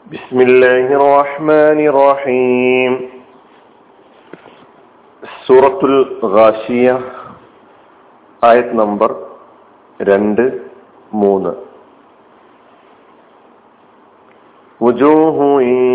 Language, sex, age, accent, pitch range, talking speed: Malayalam, male, 50-69, native, 120-140 Hz, 40 wpm